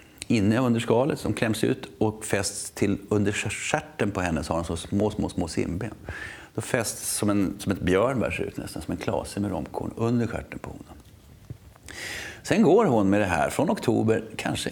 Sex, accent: male, native